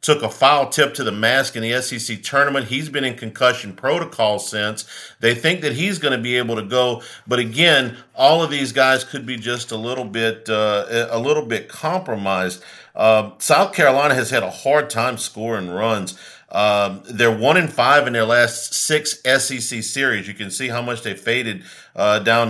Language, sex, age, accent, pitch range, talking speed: English, male, 50-69, American, 115-140 Hz, 195 wpm